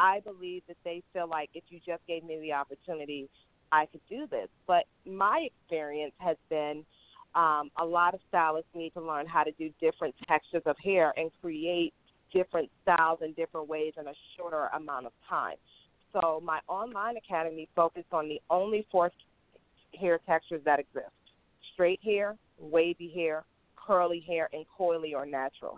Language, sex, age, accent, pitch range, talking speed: English, female, 40-59, American, 160-195 Hz, 170 wpm